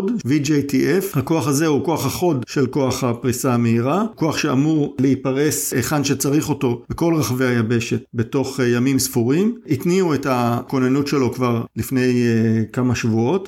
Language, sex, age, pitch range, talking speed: Hebrew, male, 50-69, 120-140 Hz, 135 wpm